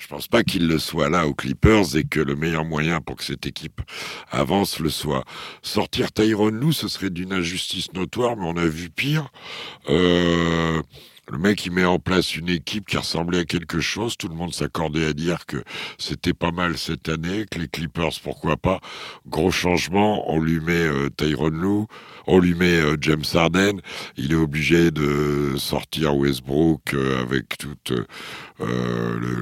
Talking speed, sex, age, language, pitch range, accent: 185 wpm, male, 60-79, French, 65-85 Hz, French